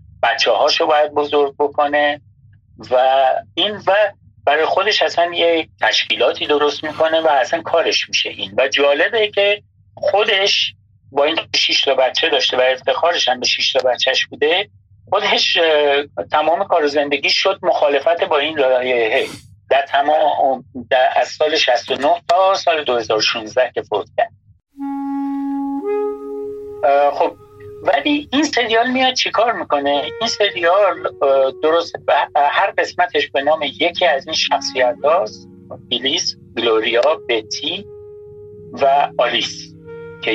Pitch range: 135-195 Hz